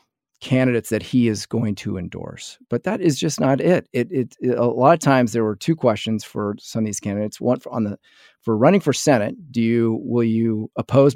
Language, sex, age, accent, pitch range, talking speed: English, male, 40-59, American, 105-120 Hz, 225 wpm